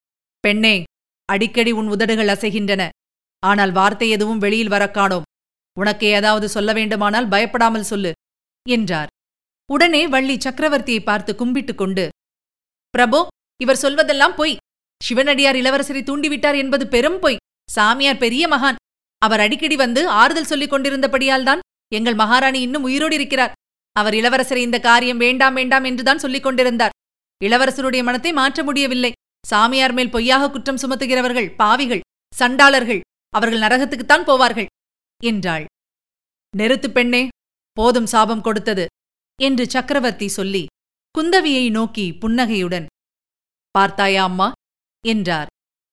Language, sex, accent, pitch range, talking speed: Tamil, female, native, 215-275 Hz, 110 wpm